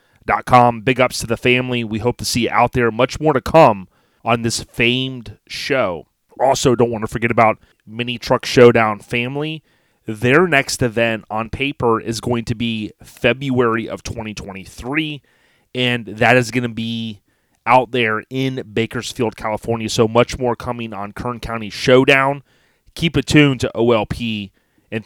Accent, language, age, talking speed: American, English, 30-49, 160 wpm